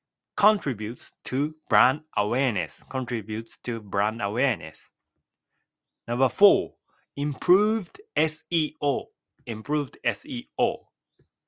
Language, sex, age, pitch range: Japanese, male, 30-49, 125-175 Hz